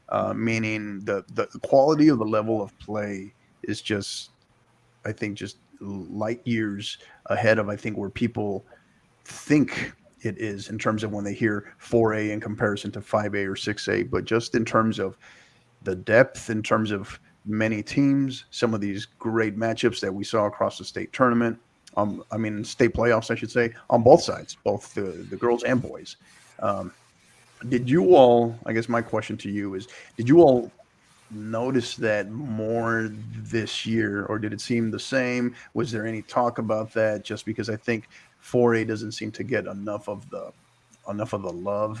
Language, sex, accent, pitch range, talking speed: English, male, American, 105-115 Hz, 180 wpm